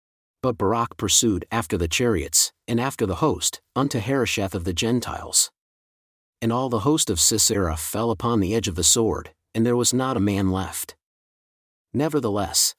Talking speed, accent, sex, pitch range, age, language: 170 wpm, American, male, 100-130 Hz, 40-59, English